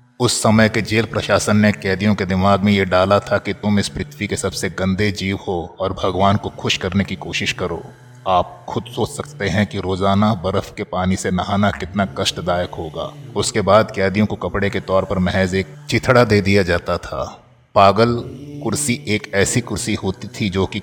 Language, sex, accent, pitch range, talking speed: Hindi, male, native, 95-105 Hz, 200 wpm